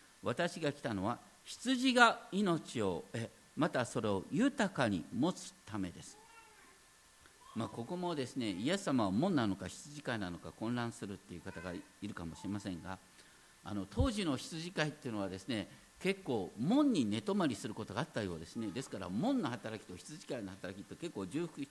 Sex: male